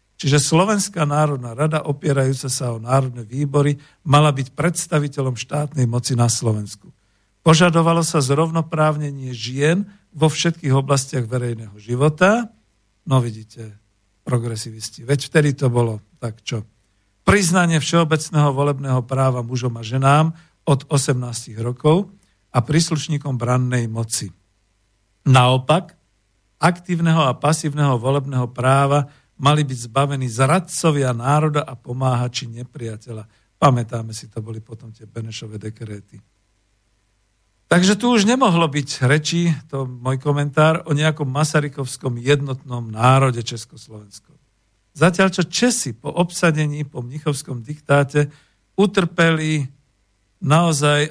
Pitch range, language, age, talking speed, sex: 120-155 Hz, Slovak, 50-69, 110 wpm, male